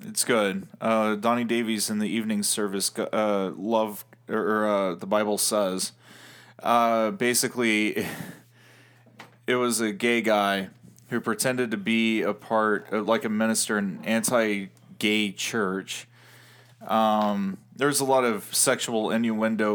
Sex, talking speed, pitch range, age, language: male, 140 wpm, 105-130 Hz, 20-39, English